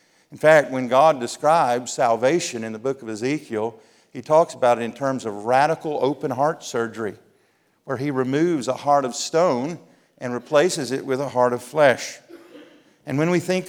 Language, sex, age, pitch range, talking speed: English, male, 50-69, 120-150 Hz, 180 wpm